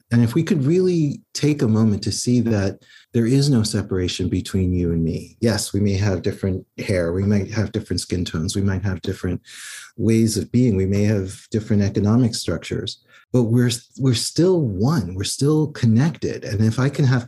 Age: 40-59